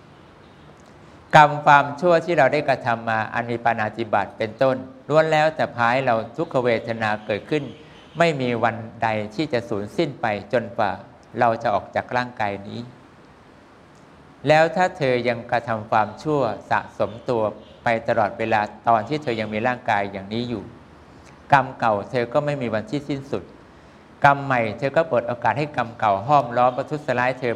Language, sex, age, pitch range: English, male, 60-79, 110-140 Hz